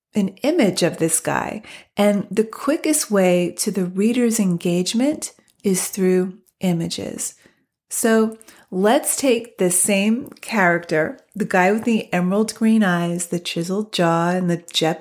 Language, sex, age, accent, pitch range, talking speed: English, female, 40-59, American, 180-230 Hz, 140 wpm